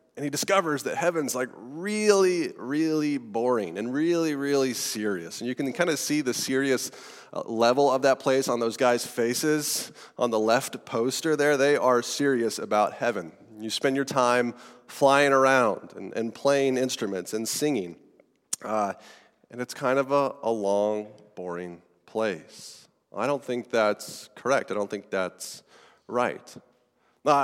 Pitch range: 115-145 Hz